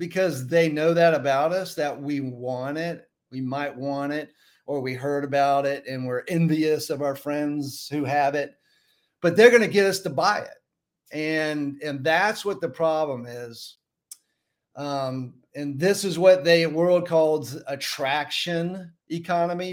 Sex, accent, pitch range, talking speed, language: male, American, 140-170 Hz, 165 wpm, English